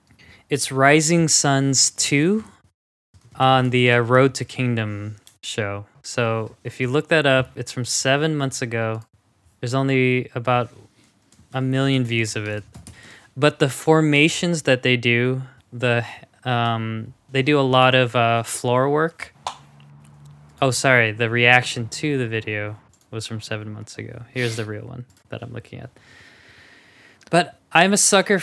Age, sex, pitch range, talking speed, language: 20-39, male, 115-135 Hz, 150 wpm, English